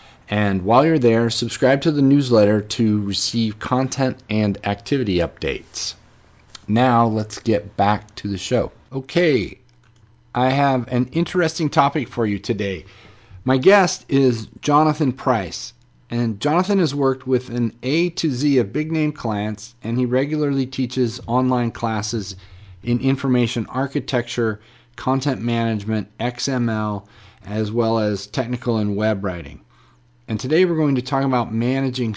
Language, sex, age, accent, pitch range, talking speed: English, male, 40-59, American, 105-130 Hz, 140 wpm